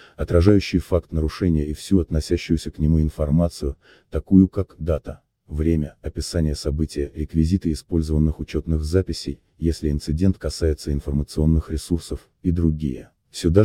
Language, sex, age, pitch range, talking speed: Russian, male, 30-49, 75-90 Hz, 120 wpm